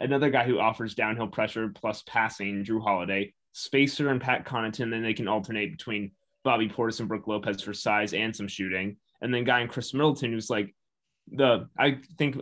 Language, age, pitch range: English, 20-39, 115-140 Hz